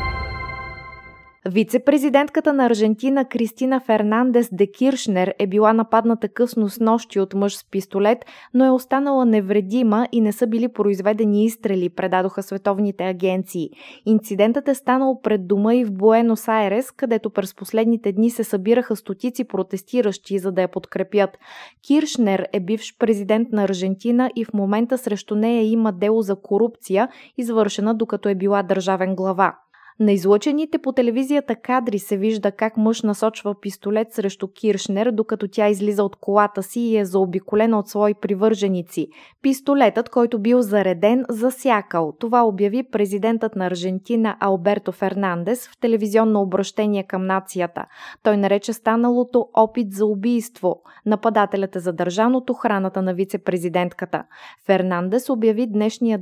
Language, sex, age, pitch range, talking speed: Bulgarian, female, 20-39, 195-235 Hz, 140 wpm